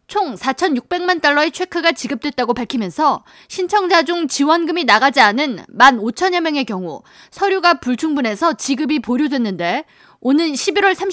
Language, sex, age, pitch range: Korean, female, 20-39, 250-345 Hz